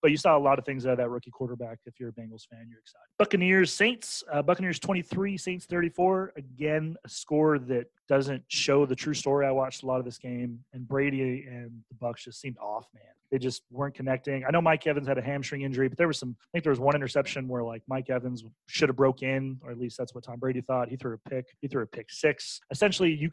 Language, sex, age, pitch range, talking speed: English, male, 30-49, 125-160 Hz, 255 wpm